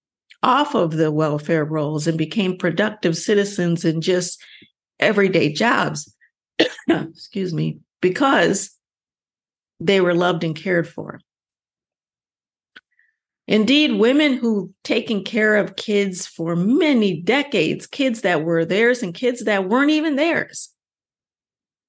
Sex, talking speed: female, 115 wpm